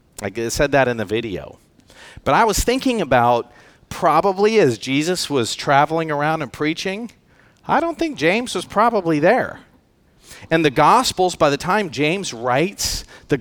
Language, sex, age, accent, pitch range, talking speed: English, male, 40-59, American, 135-180 Hz, 160 wpm